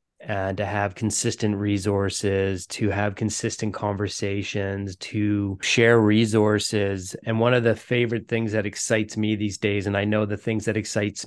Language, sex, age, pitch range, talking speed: English, male, 20-39, 105-120 Hz, 160 wpm